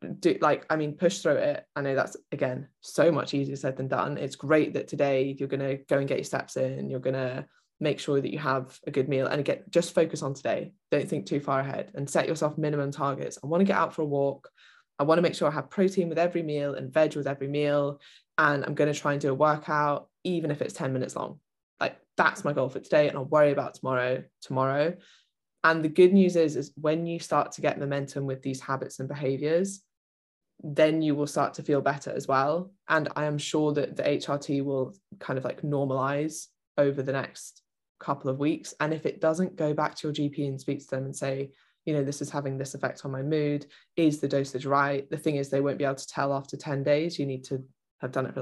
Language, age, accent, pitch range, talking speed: English, 20-39, British, 135-155 Hz, 245 wpm